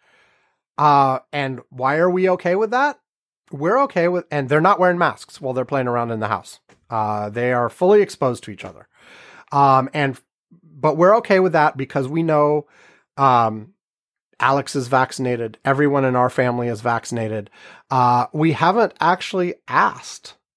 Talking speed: 165 wpm